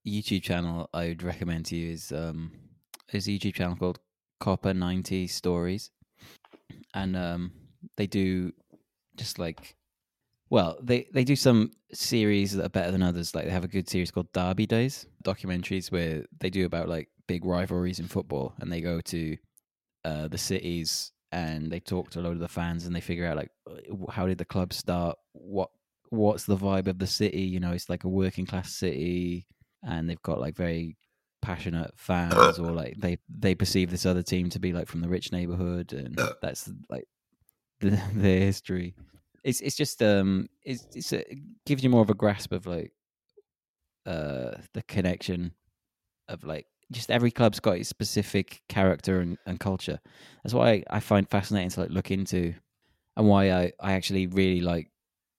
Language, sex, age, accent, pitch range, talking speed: English, male, 20-39, British, 85-100 Hz, 180 wpm